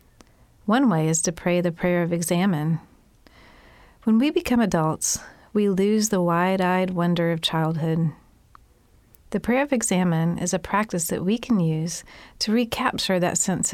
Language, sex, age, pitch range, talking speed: English, female, 40-59, 170-205 Hz, 155 wpm